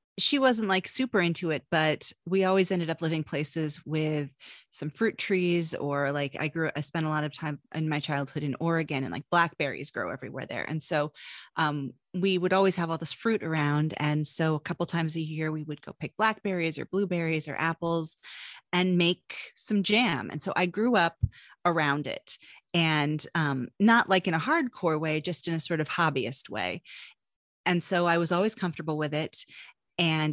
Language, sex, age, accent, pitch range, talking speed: English, female, 30-49, American, 150-180 Hz, 200 wpm